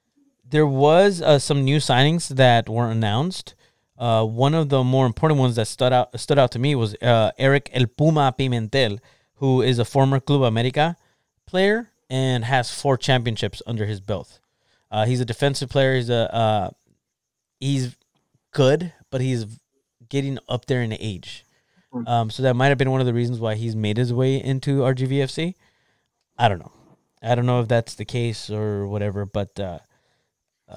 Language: English